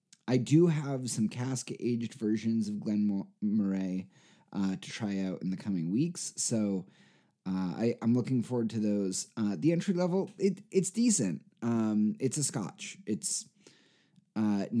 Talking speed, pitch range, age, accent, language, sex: 160 wpm, 100-140 Hz, 30-49, American, English, male